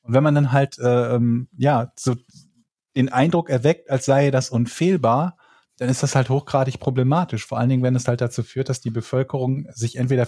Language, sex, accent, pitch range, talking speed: German, male, German, 120-140 Hz, 200 wpm